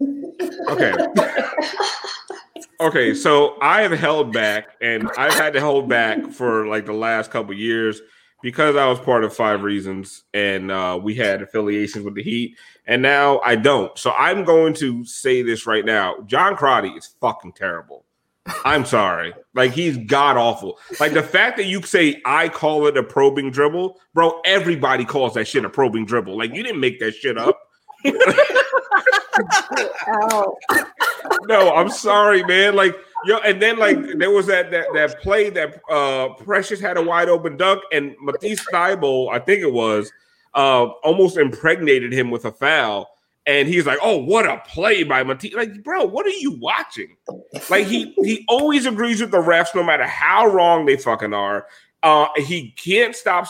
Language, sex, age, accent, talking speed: English, male, 30-49, American, 175 wpm